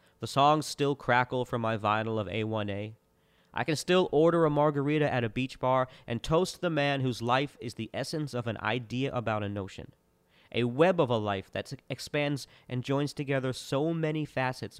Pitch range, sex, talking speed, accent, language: 100-140 Hz, male, 190 wpm, American, English